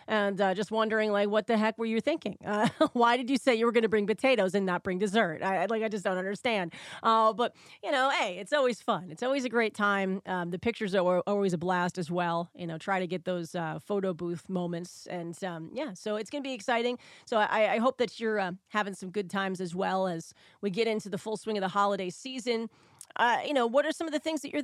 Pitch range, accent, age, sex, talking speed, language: 190-240 Hz, American, 30-49, female, 260 wpm, English